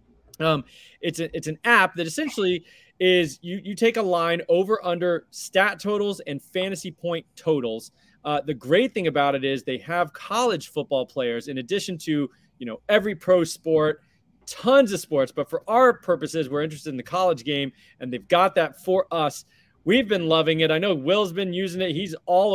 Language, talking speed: English, 195 wpm